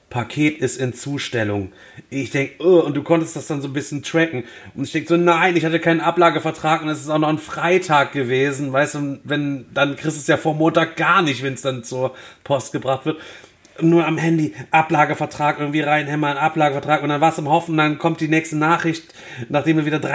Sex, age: male, 30-49